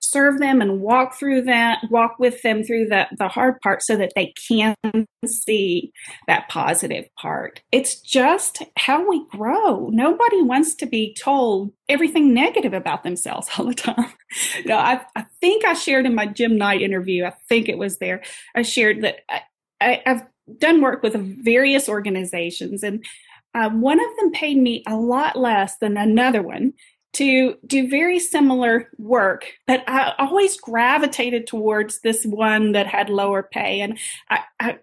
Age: 30-49